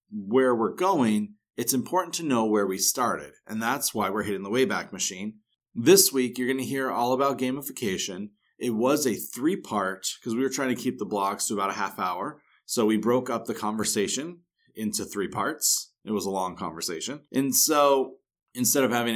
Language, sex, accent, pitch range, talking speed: English, male, American, 110-135 Hz, 200 wpm